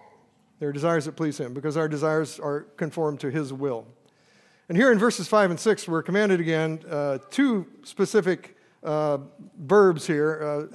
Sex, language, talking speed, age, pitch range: male, English, 165 wpm, 50-69, 155-200 Hz